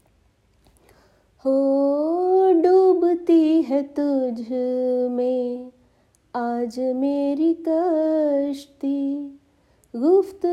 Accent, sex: native, female